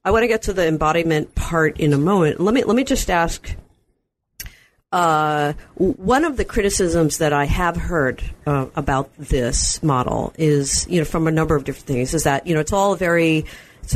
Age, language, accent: 50-69, English, American